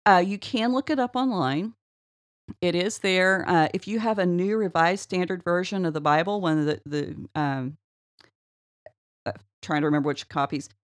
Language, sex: English, female